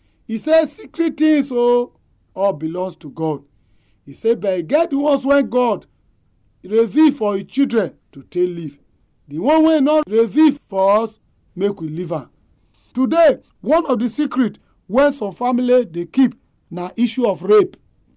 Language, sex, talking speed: English, male, 160 wpm